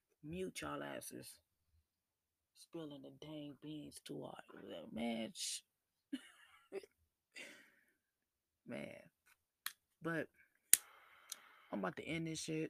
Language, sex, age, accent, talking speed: English, female, 20-39, American, 85 wpm